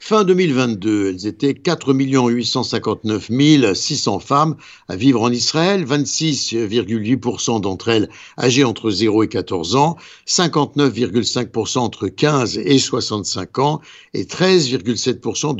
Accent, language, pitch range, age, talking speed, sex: French, French, 115-160 Hz, 60-79, 110 wpm, male